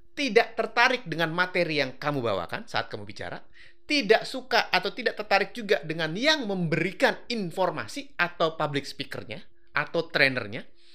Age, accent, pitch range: 30-49, native, 140-215 Hz